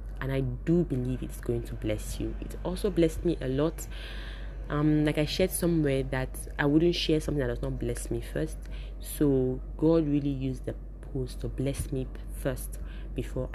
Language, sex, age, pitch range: English, female, 20-39, 120-155 Hz